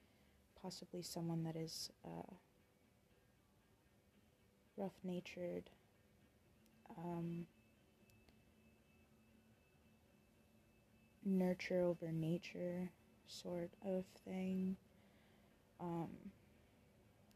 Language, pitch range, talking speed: English, 155-185 Hz, 40 wpm